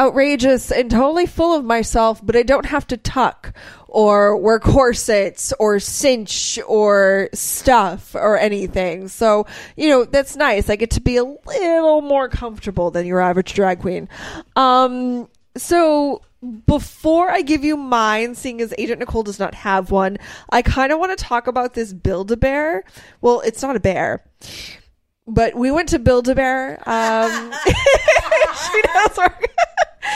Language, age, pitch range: English, 20-39, 215-285 Hz